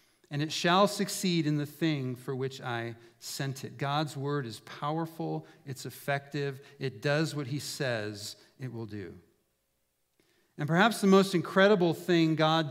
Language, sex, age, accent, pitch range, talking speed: English, male, 50-69, American, 125-160 Hz, 155 wpm